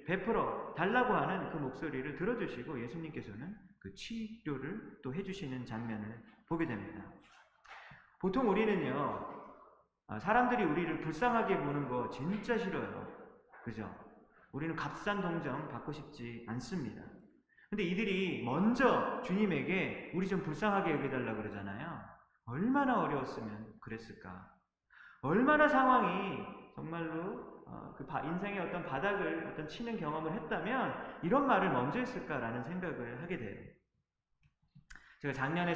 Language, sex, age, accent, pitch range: Korean, male, 30-49, native, 135-215 Hz